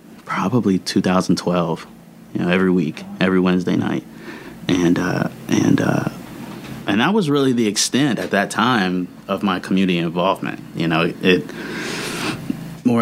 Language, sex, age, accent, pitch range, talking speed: English, male, 30-49, American, 85-105 Hz, 140 wpm